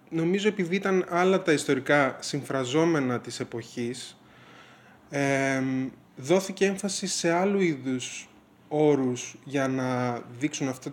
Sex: male